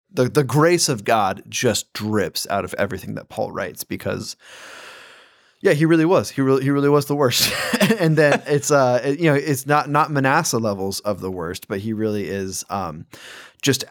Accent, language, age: American, English, 20-39